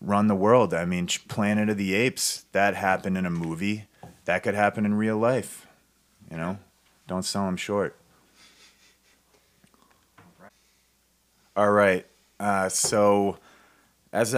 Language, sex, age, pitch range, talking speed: English, male, 30-49, 90-105 Hz, 130 wpm